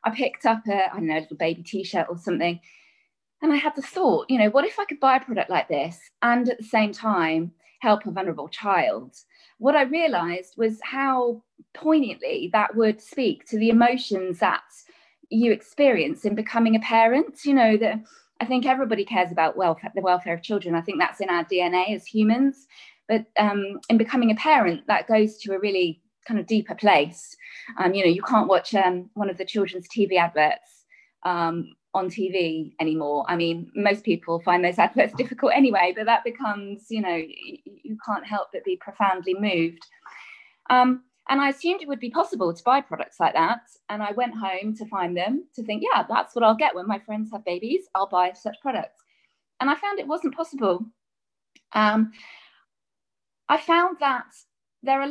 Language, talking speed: English, 195 wpm